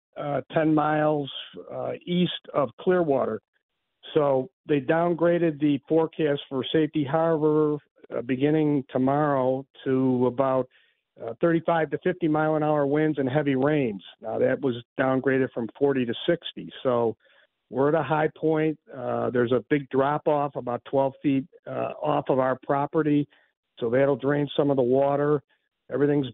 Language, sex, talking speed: English, male, 145 wpm